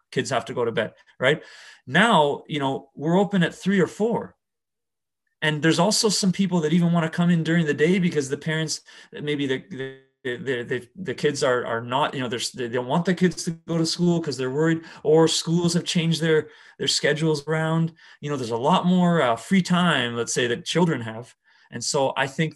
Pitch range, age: 130-165 Hz, 30-49